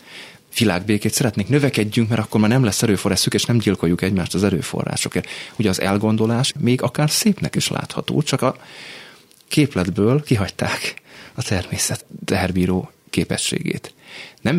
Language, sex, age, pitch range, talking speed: Hungarian, male, 30-49, 95-125 Hz, 130 wpm